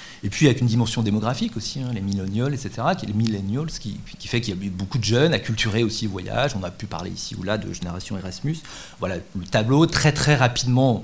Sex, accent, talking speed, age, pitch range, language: male, French, 245 wpm, 40-59, 110-145 Hz, French